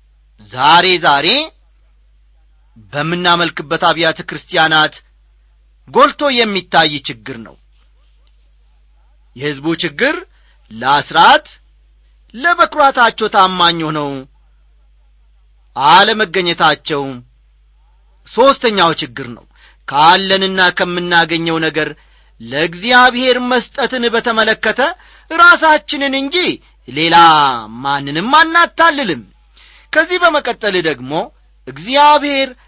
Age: 40-59